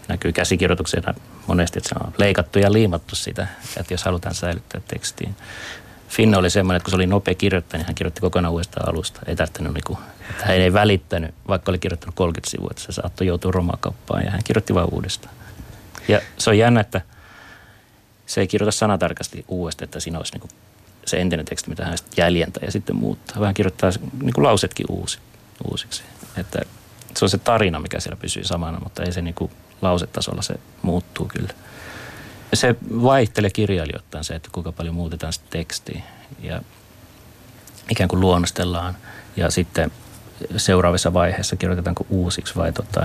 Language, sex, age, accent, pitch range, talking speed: Finnish, male, 30-49, native, 85-105 Hz, 160 wpm